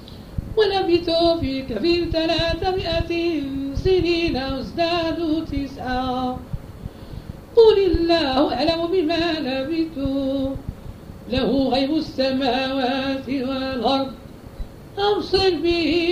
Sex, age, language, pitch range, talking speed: female, 50-69, Arabic, 270-340 Hz, 65 wpm